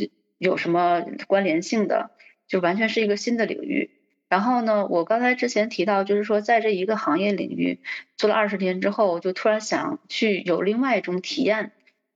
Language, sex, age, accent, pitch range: Chinese, female, 30-49, native, 175-230 Hz